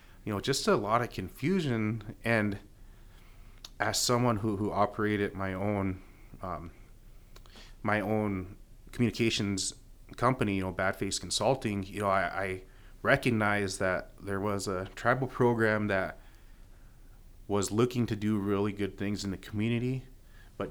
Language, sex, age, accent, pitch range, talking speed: English, male, 30-49, American, 95-110 Hz, 140 wpm